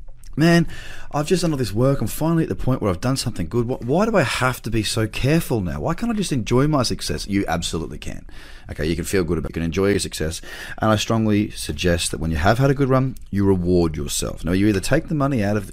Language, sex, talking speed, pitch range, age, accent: English, male, 255 wpm, 85-110 Hz, 30-49, Australian